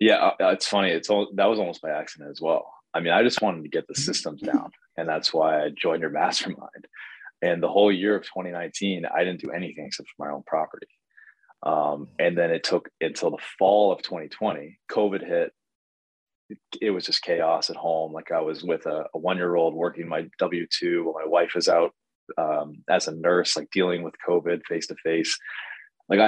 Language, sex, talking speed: English, male, 200 wpm